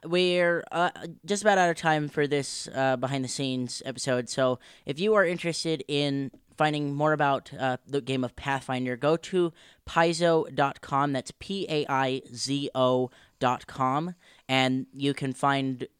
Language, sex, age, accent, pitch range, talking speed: English, female, 10-29, American, 130-155 Hz, 170 wpm